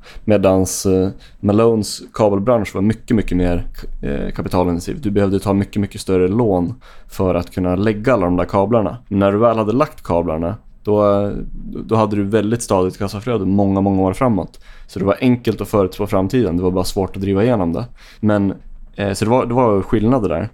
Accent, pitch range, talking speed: native, 95-115 Hz, 185 wpm